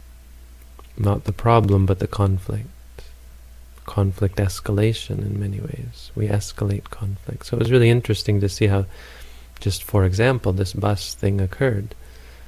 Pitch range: 90-105 Hz